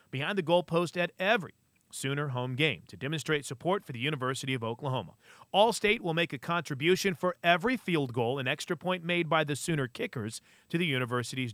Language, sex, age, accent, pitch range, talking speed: English, male, 40-59, American, 135-190 Hz, 185 wpm